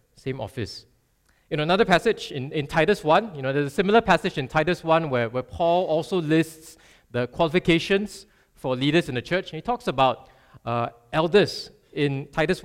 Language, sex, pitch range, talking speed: English, male, 130-170 Hz, 180 wpm